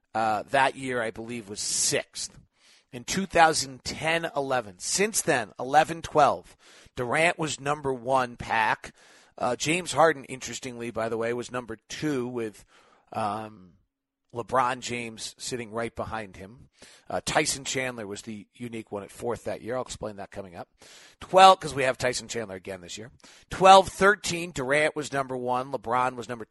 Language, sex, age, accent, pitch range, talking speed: English, male, 40-59, American, 115-150 Hz, 160 wpm